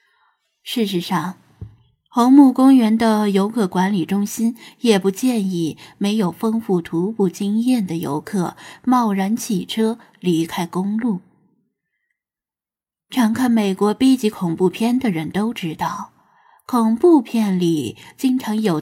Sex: female